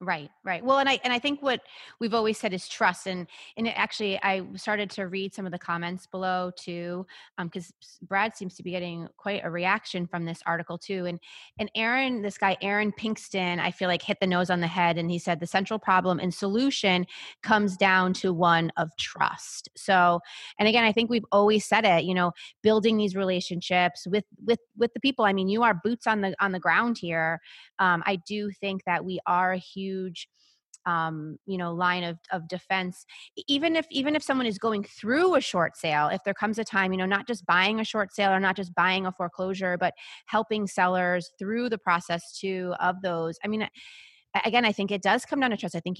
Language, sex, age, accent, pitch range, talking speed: English, female, 30-49, American, 175-210 Hz, 225 wpm